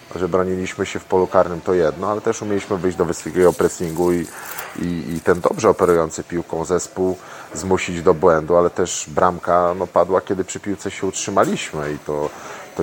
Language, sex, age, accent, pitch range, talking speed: Polish, male, 30-49, native, 80-95 Hz, 180 wpm